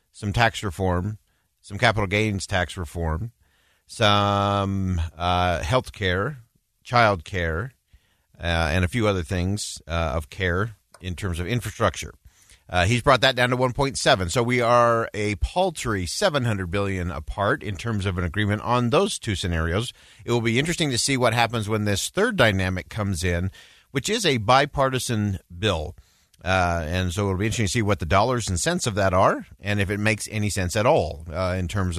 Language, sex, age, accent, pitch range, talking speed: English, male, 50-69, American, 90-120 Hz, 180 wpm